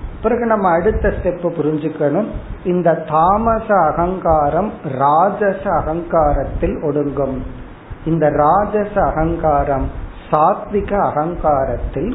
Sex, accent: male, native